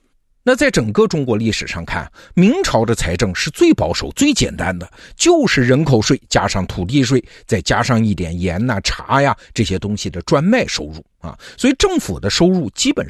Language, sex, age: Chinese, male, 50-69